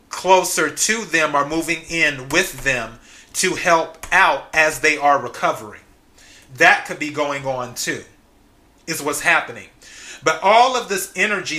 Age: 30-49